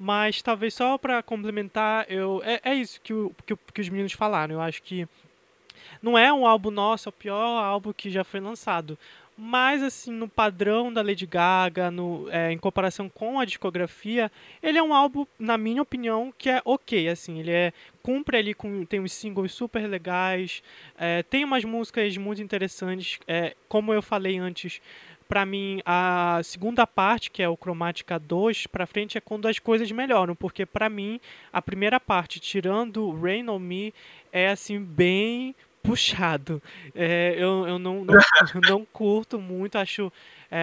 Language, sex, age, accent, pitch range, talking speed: Portuguese, male, 20-39, Brazilian, 185-225 Hz, 175 wpm